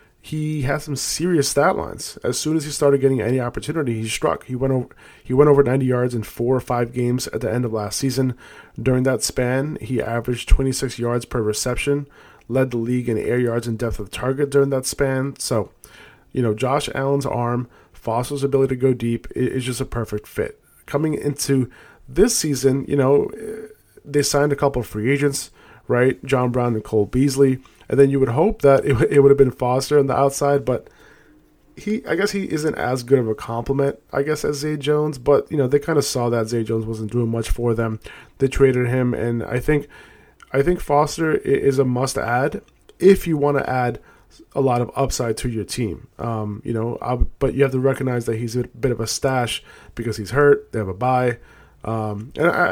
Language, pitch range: English, 120-140 Hz